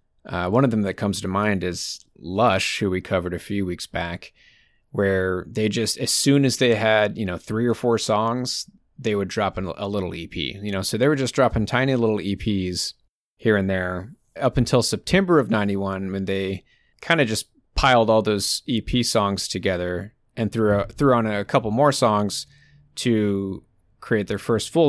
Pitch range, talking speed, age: 95-120 Hz, 195 wpm, 30-49